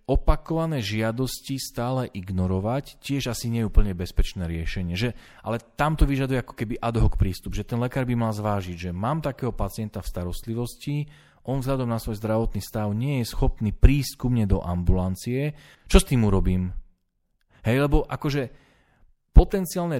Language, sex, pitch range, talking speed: Slovak, male, 95-120 Hz, 155 wpm